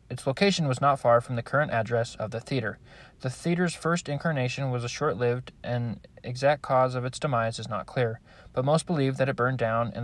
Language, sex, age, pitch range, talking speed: English, male, 20-39, 115-140 Hz, 215 wpm